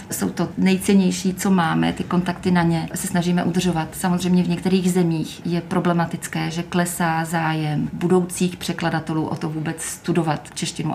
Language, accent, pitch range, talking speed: Czech, native, 160-180 Hz, 155 wpm